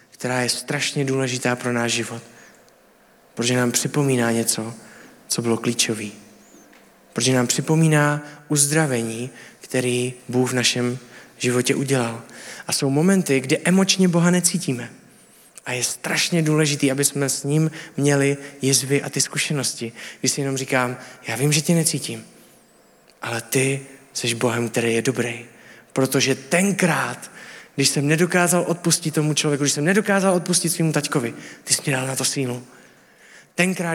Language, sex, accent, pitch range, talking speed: Czech, male, native, 125-160 Hz, 145 wpm